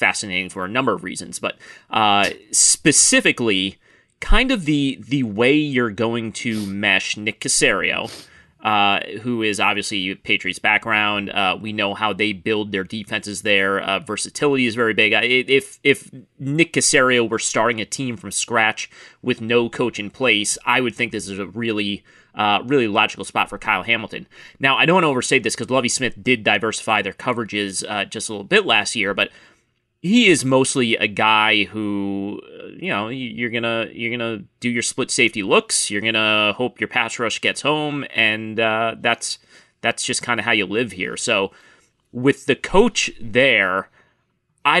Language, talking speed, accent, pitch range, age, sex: English, 185 wpm, American, 100-125 Hz, 30-49, male